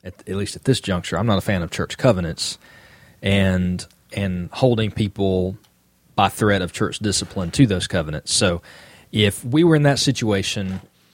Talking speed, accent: 170 wpm, American